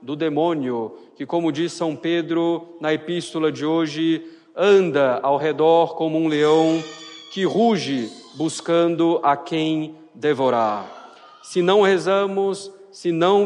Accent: Brazilian